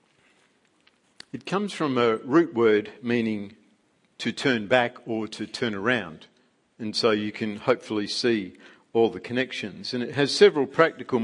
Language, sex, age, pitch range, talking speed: English, male, 50-69, 130-180 Hz, 150 wpm